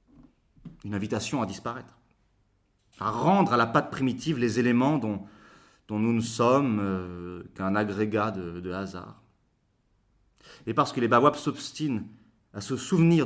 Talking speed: 140 wpm